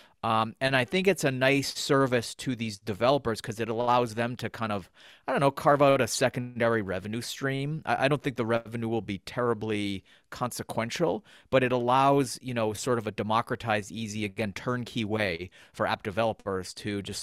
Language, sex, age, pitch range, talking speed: English, male, 30-49, 105-130 Hz, 190 wpm